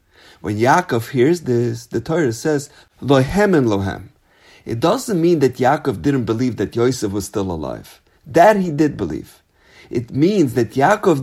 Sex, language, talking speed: male, English, 160 wpm